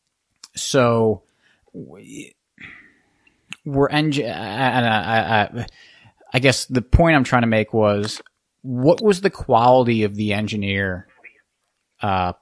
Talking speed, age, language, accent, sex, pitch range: 110 wpm, 30-49, English, American, male, 100-120 Hz